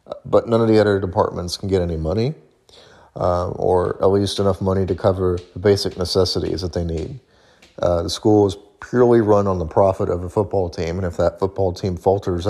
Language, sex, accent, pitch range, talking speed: English, male, American, 90-100 Hz, 205 wpm